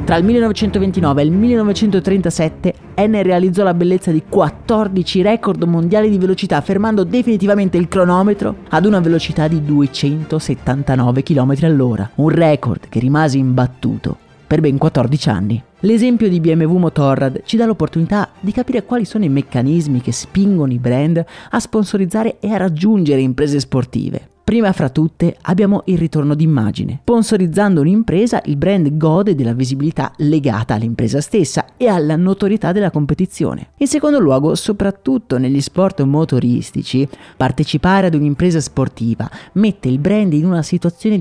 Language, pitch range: Italian, 145-210 Hz